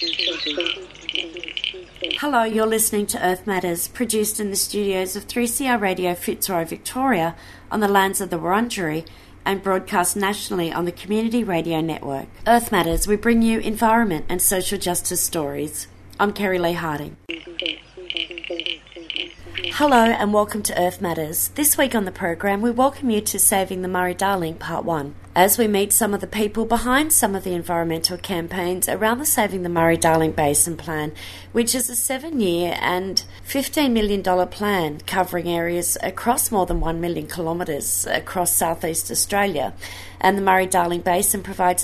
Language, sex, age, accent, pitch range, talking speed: English, female, 30-49, Australian, 170-215 Hz, 155 wpm